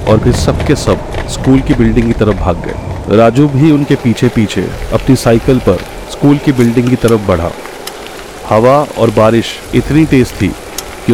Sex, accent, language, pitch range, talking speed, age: male, native, Hindi, 100-125 Hz, 180 wpm, 40-59